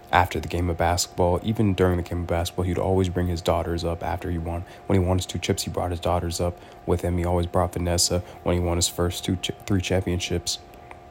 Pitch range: 85-95 Hz